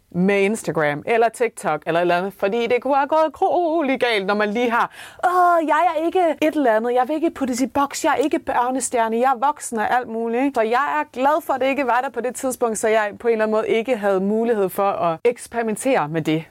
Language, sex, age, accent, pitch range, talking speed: Danish, female, 30-49, native, 175-235 Hz, 250 wpm